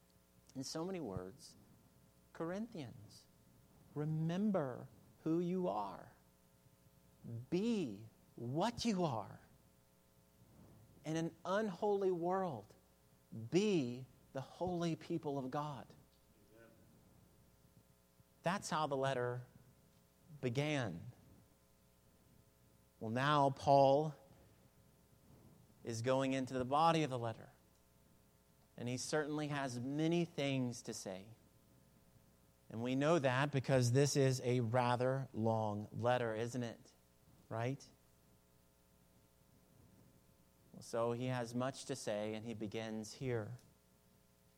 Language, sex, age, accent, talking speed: English, male, 40-59, American, 95 wpm